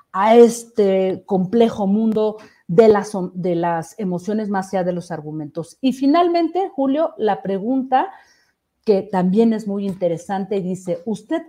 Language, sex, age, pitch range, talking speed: Spanish, female, 40-59, 185-250 Hz, 130 wpm